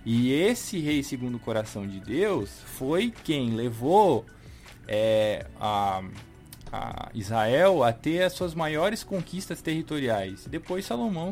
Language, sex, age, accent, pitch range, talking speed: Portuguese, male, 20-39, Brazilian, 110-160 Hz, 110 wpm